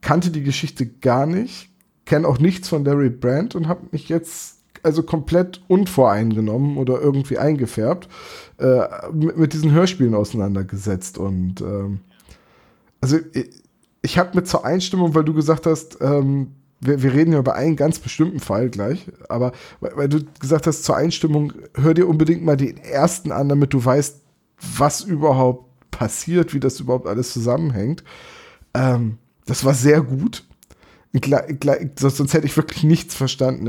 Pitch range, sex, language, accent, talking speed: 115-160 Hz, male, German, German, 155 wpm